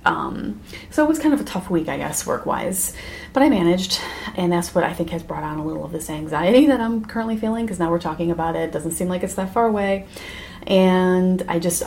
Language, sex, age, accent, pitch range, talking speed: English, female, 30-49, American, 165-200 Hz, 250 wpm